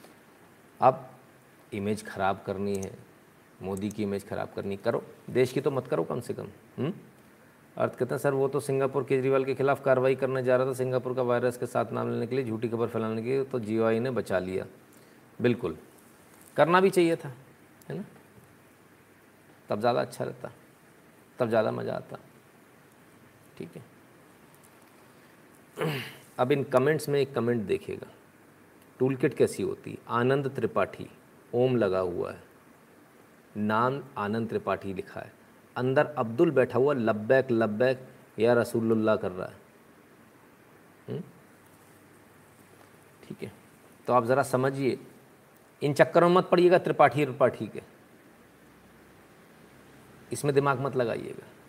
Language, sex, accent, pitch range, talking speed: Hindi, male, native, 115-135 Hz, 140 wpm